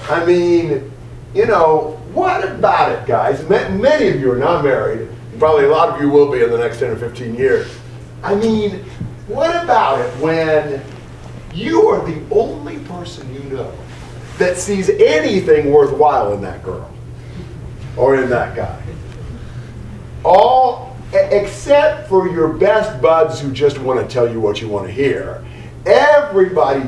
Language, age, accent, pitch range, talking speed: English, 40-59, American, 120-190 Hz, 155 wpm